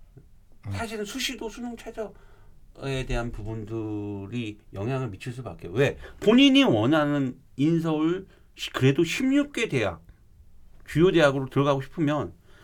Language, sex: Korean, male